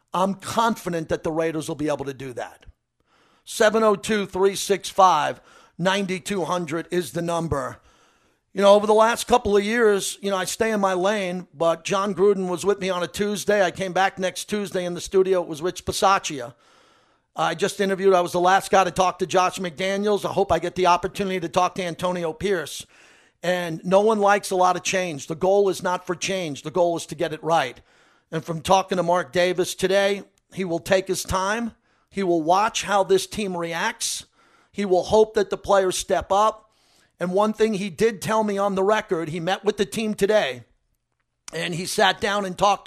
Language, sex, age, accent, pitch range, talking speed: English, male, 50-69, American, 175-200 Hz, 205 wpm